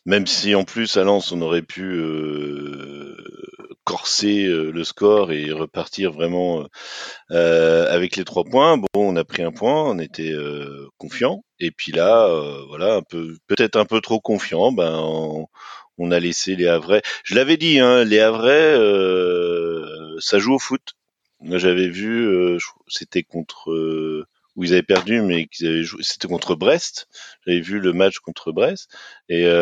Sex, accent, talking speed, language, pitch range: male, French, 175 wpm, French, 80-110 Hz